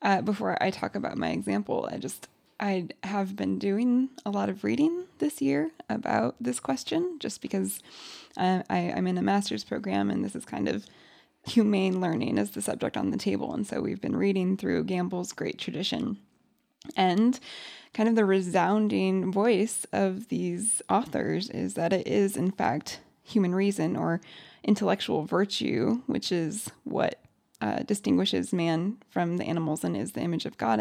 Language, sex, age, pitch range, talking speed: English, female, 20-39, 185-235 Hz, 170 wpm